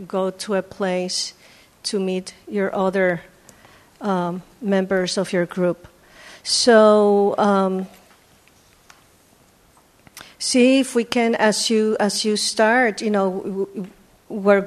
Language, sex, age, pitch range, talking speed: English, female, 50-69, 195-235 Hz, 110 wpm